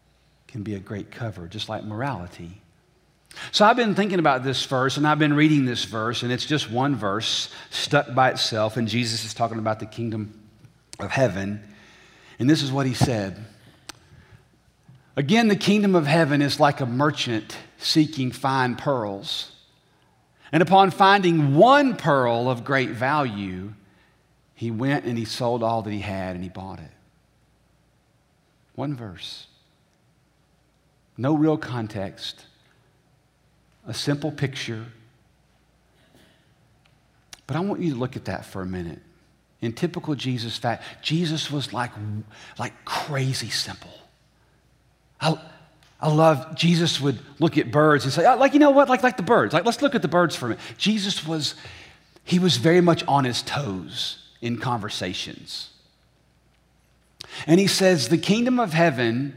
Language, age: English, 40-59